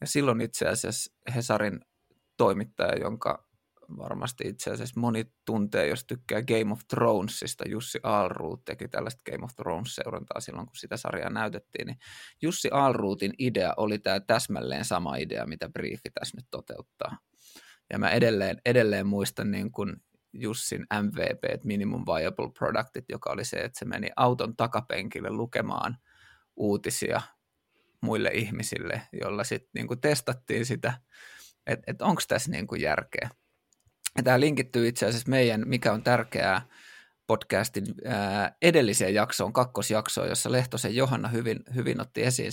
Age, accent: 20-39, native